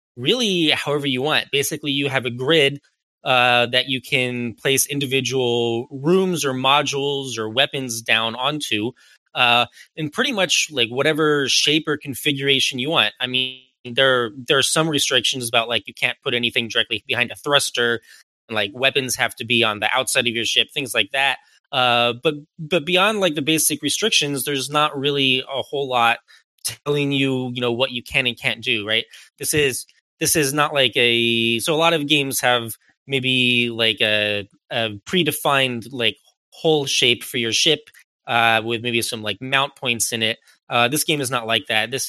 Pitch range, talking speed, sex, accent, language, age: 115-145 Hz, 185 wpm, male, American, English, 20-39